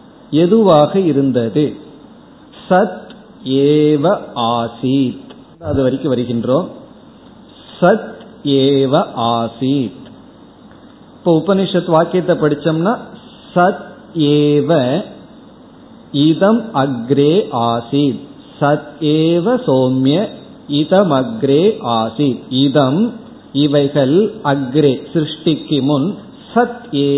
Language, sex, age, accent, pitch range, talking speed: Tamil, male, 50-69, native, 140-215 Hz, 60 wpm